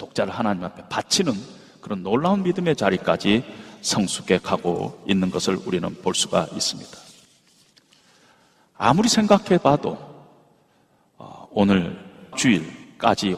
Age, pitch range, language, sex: 40-59, 115-185 Hz, Korean, male